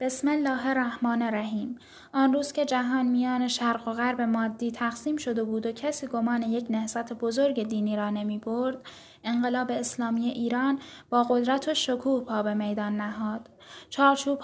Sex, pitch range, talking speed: female, 220-255 Hz, 155 wpm